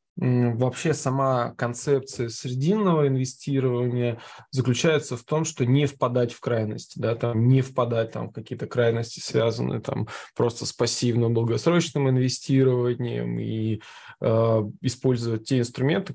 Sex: male